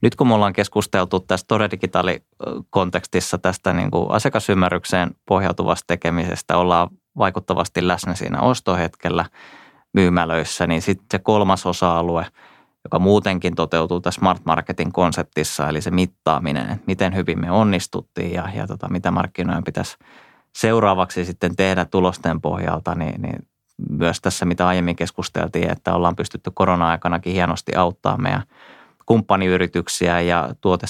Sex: male